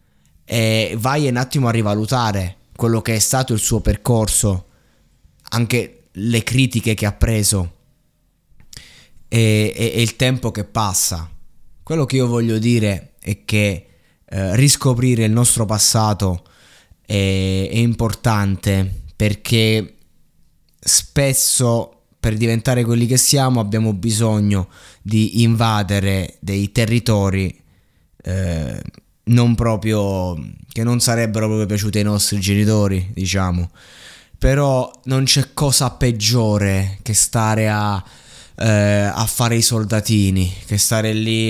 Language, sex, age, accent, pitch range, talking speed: Italian, male, 20-39, native, 100-115 Hz, 115 wpm